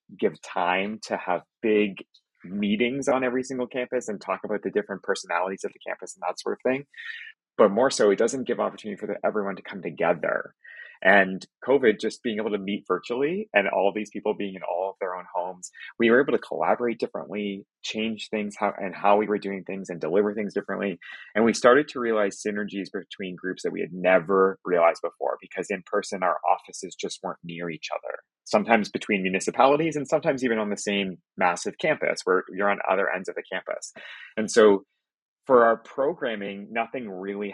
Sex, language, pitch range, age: male, English, 95-115 Hz, 30-49